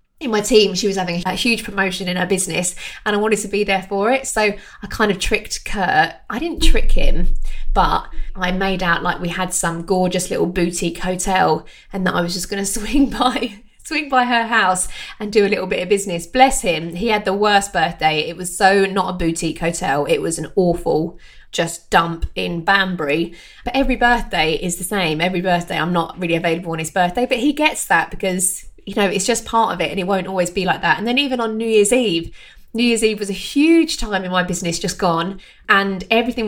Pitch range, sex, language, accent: 175-215 Hz, female, English, British